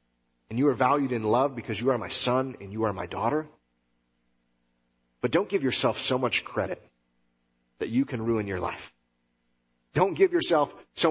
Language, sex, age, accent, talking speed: English, male, 40-59, American, 180 wpm